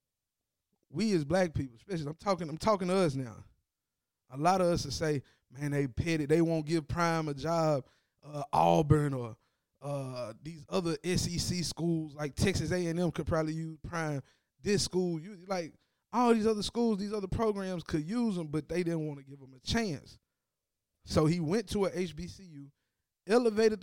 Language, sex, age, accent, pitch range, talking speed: English, male, 20-39, American, 145-205 Hz, 180 wpm